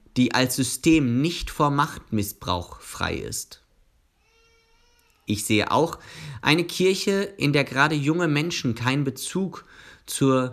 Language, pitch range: German, 110-150 Hz